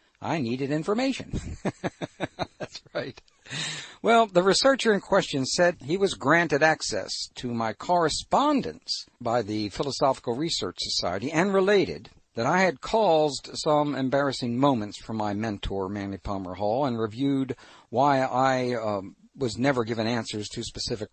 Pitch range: 105-145 Hz